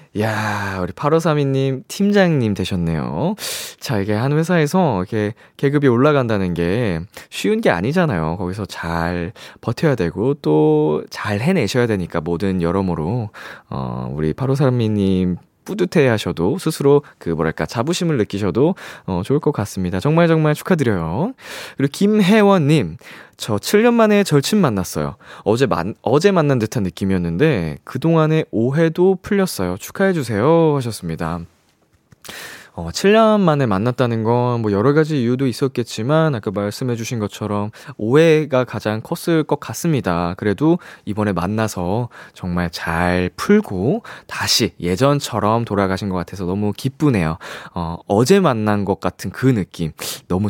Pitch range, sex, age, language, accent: 90-150 Hz, male, 20-39, Korean, native